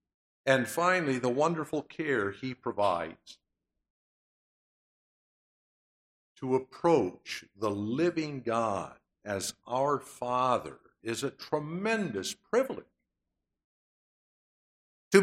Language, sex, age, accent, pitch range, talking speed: English, male, 60-79, American, 120-185 Hz, 80 wpm